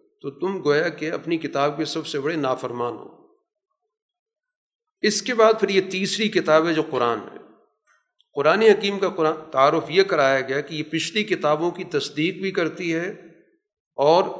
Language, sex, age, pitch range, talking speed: Urdu, male, 50-69, 150-205 Hz, 165 wpm